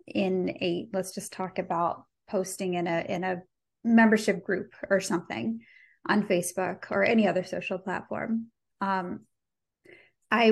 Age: 20-39